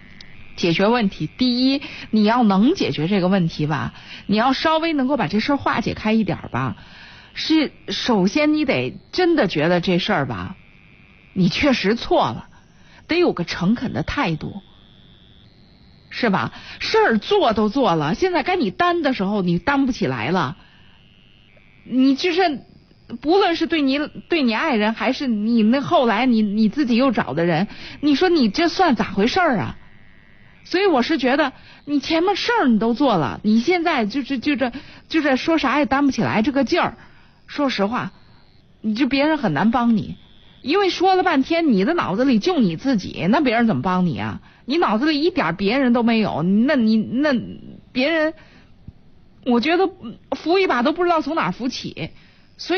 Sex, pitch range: female, 215-310 Hz